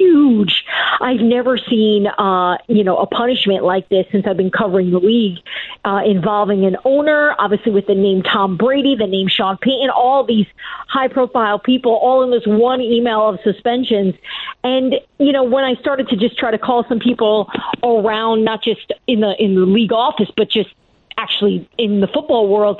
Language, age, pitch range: English, 40-59, 205-260 Hz